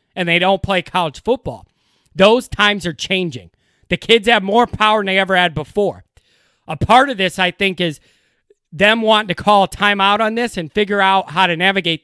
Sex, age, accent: male, 30-49, American